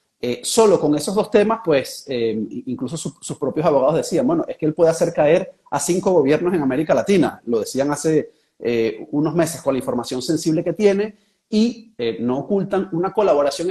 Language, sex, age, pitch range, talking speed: Spanish, male, 30-49, 125-185 Hz, 195 wpm